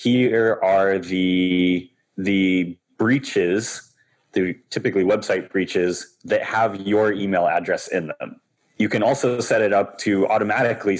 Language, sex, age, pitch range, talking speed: English, male, 20-39, 90-120 Hz, 130 wpm